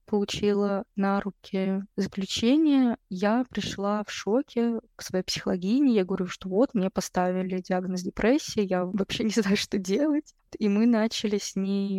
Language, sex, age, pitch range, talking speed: Russian, female, 20-39, 190-215 Hz, 150 wpm